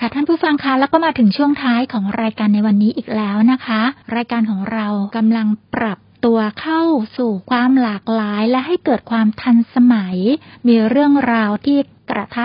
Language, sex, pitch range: Thai, female, 210-250 Hz